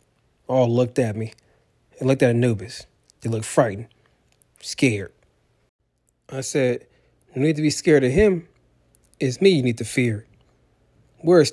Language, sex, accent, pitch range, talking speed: English, male, American, 95-140 Hz, 145 wpm